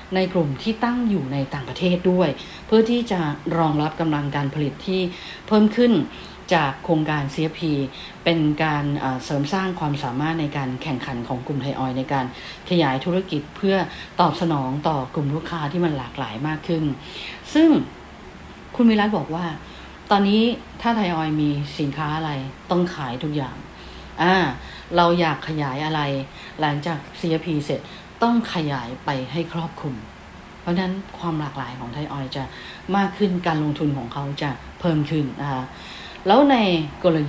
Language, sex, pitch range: English, female, 140-175 Hz